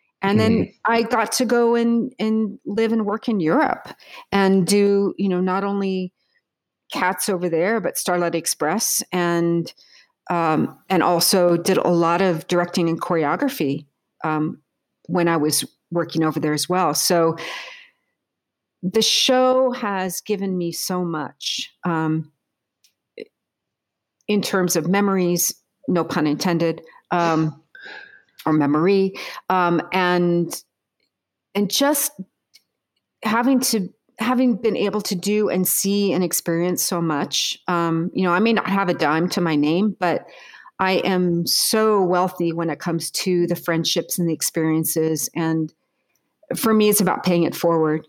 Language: English